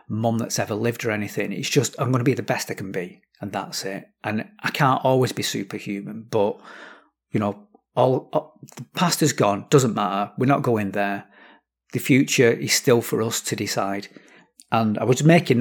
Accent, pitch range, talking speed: British, 105-130 Hz, 205 wpm